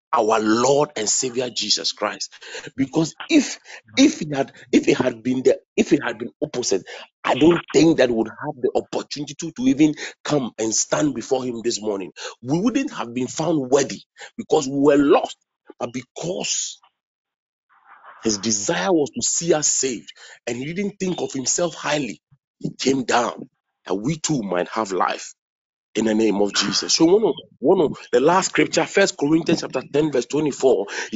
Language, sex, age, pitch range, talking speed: English, male, 40-59, 120-175 Hz, 180 wpm